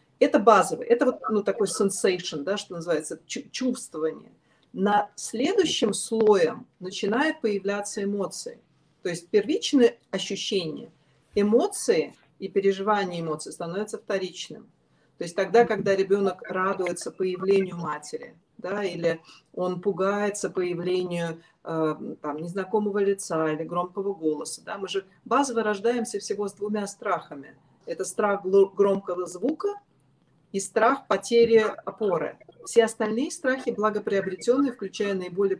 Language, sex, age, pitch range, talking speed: Russian, female, 40-59, 185-235 Hz, 120 wpm